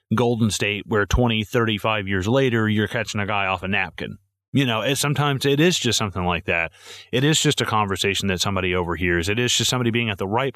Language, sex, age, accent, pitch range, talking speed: English, male, 30-49, American, 100-125 Hz, 225 wpm